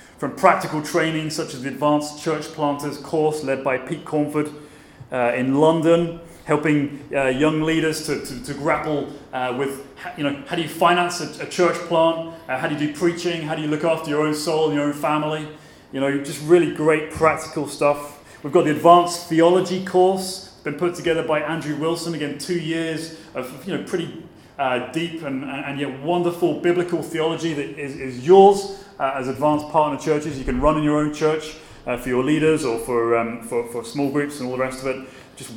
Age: 30-49